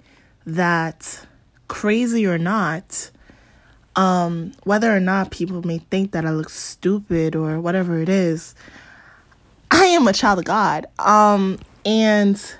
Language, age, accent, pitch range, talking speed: English, 20-39, American, 160-210 Hz, 130 wpm